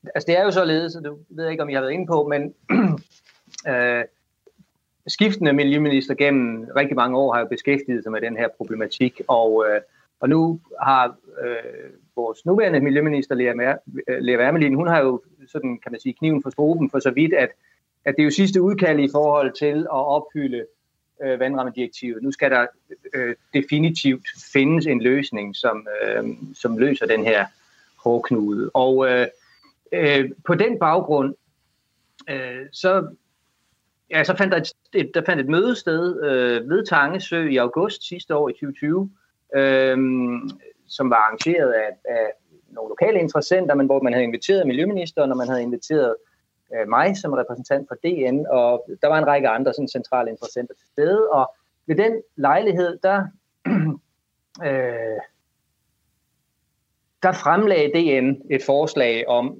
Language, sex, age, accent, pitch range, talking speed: Danish, male, 30-49, native, 130-170 Hz, 160 wpm